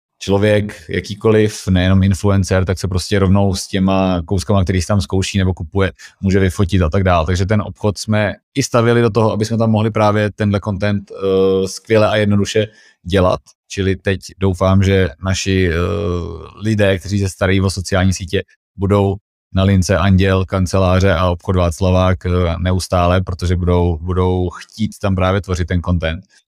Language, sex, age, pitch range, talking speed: Czech, male, 30-49, 90-105 Hz, 160 wpm